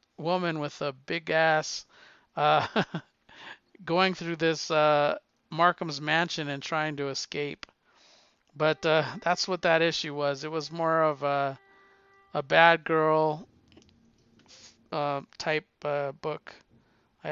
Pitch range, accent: 140-165 Hz, American